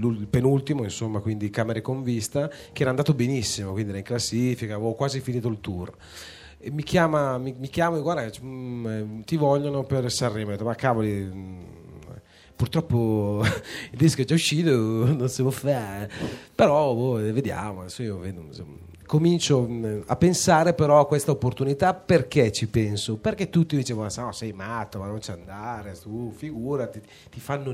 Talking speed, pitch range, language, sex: 155 wpm, 105-145 Hz, Italian, male